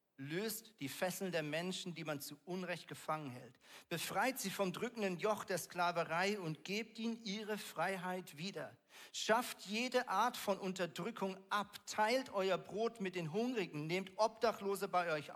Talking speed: 155 wpm